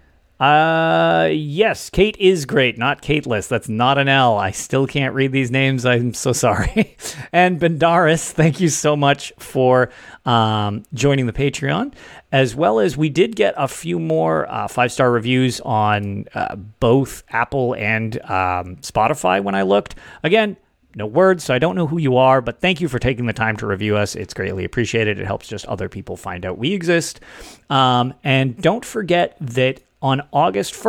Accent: American